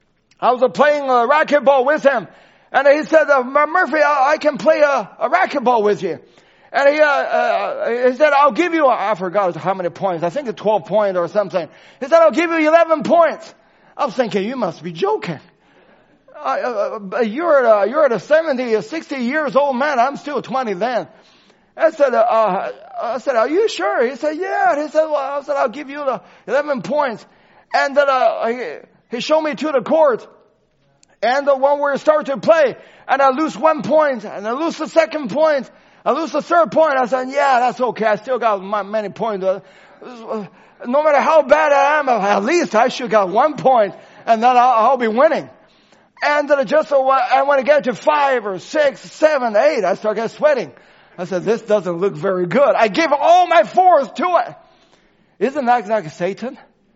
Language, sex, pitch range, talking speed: English, male, 220-305 Hz, 215 wpm